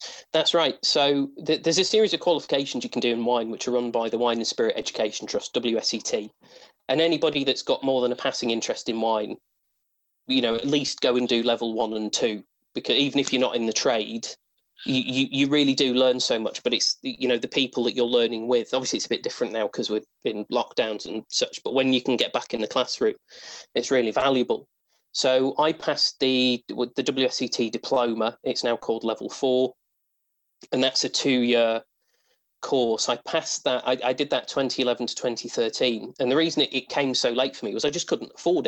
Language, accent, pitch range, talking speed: English, British, 120-150 Hz, 215 wpm